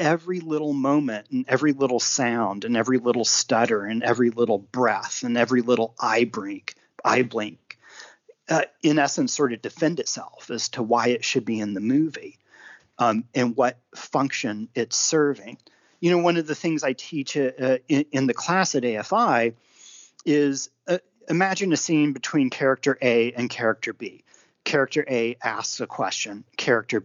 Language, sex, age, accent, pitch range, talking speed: English, male, 40-59, American, 120-150 Hz, 165 wpm